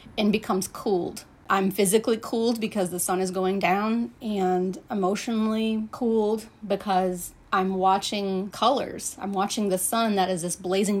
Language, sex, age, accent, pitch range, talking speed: English, female, 30-49, American, 175-210 Hz, 145 wpm